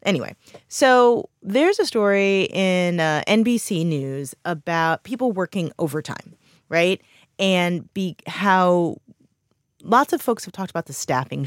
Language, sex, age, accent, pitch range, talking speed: English, female, 20-39, American, 150-195 Hz, 125 wpm